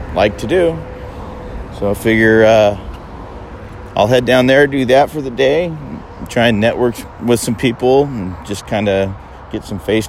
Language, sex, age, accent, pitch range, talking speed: English, male, 40-59, American, 85-110 Hz, 170 wpm